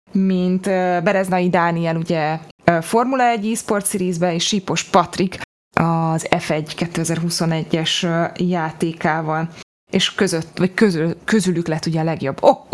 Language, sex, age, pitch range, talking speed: Hungarian, female, 20-39, 175-200 Hz, 115 wpm